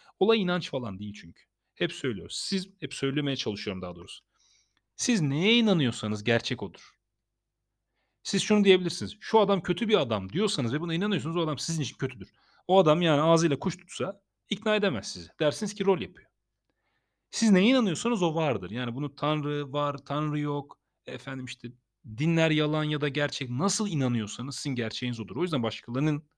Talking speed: 170 wpm